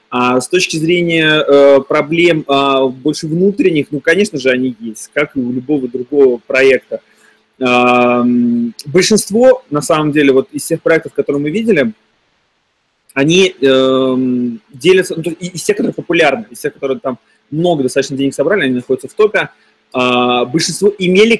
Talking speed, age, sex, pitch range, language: 135 wpm, 20-39, male, 130-165 Hz, Russian